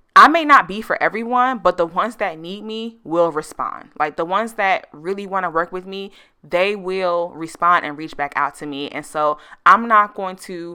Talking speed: 220 wpm